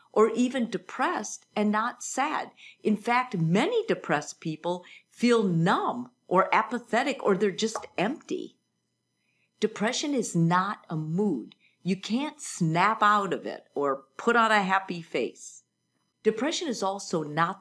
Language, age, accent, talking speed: English, 50-69, American, 135 wpm